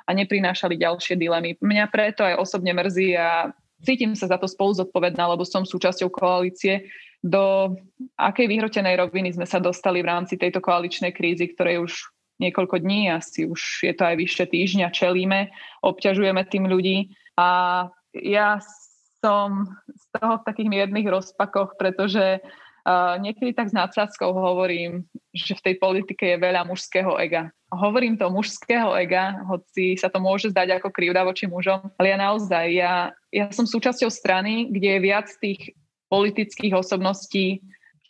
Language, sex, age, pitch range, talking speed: Slovak, female, 20-39, 180-200 Hz, 155 wpm